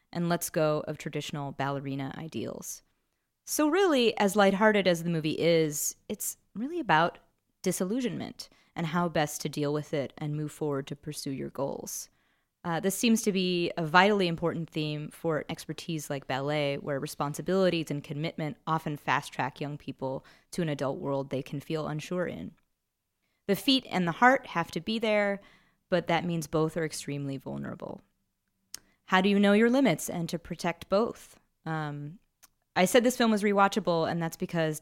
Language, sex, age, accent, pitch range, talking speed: English, female, 20-39, American, 150-185 Hz, 170 wpm